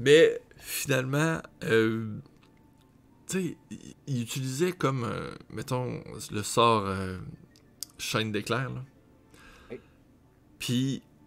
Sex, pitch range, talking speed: male, 110-150 Hz, 85 wpm